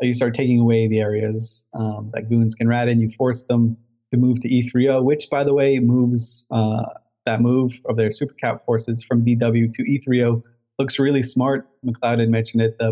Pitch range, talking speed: 110-125 Hz, 205 wpm